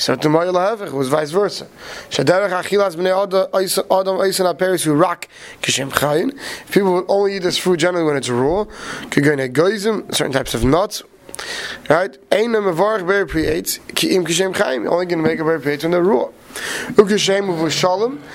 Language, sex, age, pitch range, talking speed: English, male, 30-49, 155-200 Hz, 85 wpm